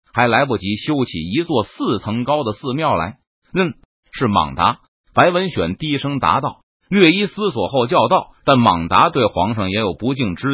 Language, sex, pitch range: Chinese, male, 110-180 Hz